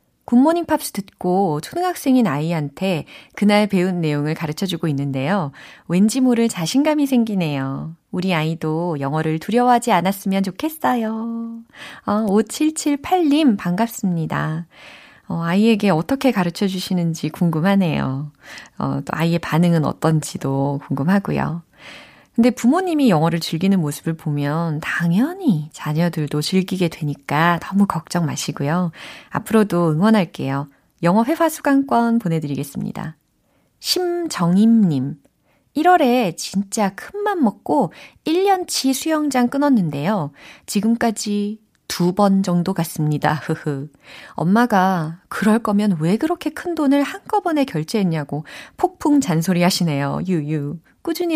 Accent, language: native, Korean